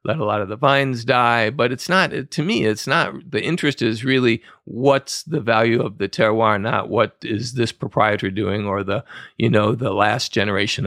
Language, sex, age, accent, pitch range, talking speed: English, male, 40-59, American, 105-125 Hz, 205 wpm